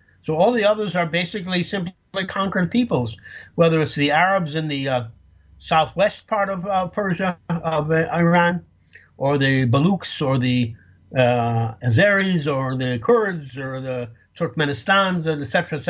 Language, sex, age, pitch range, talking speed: English, male, 60-79, 120-180 Hz, 150 wpm